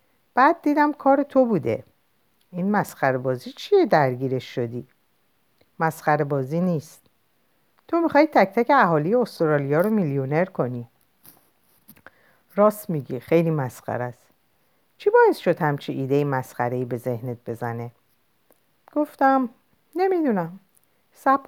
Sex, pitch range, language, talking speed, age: female, 135-225 Hz, Persian, 105 wpm, 50-69